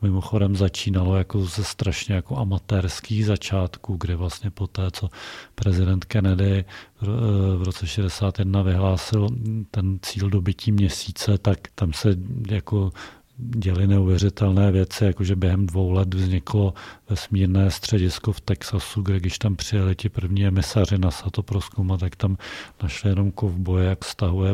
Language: Czech